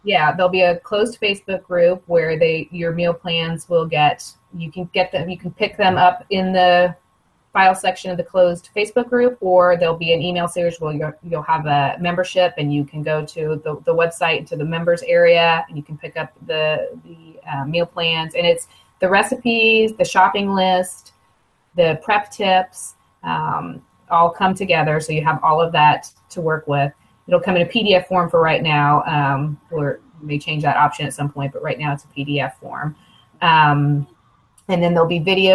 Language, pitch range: English, 155-185 Hz